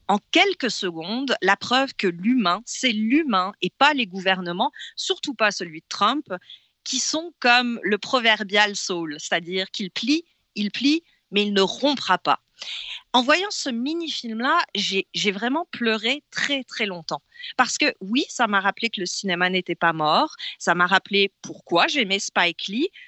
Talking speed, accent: 165 wpm, French